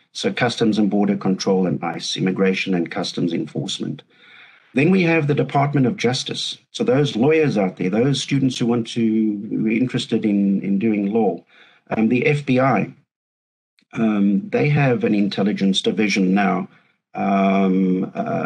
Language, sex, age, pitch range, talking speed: English, male, 50-69, 100-140 Hz, 150 wpm